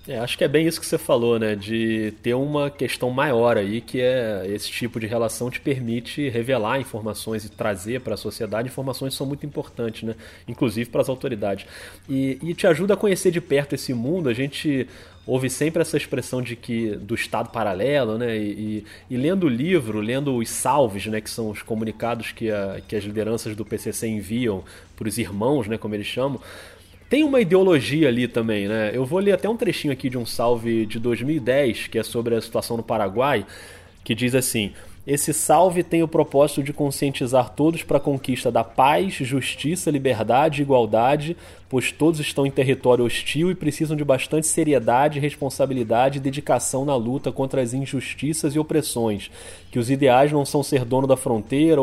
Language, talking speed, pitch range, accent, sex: Portuguese, 190 wpm, 115-145 Hz, Brazilian, male